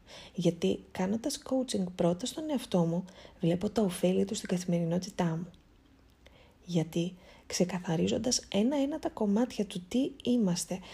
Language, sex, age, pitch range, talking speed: Greek, female, 20-39, 170-215 Hz, 125 wpm